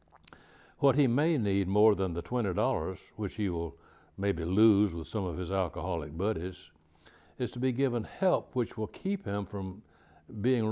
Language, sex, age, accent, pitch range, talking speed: English, male, 60-79, American, 85-115 Hz, 170 wpm